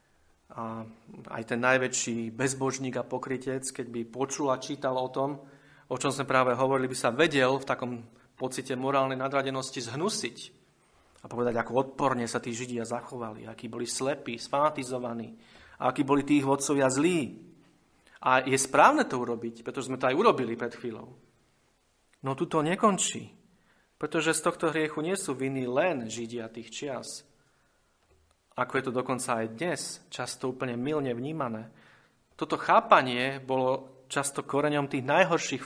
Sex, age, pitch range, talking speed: male, 40-59, 120-140 Hz, 150 wpm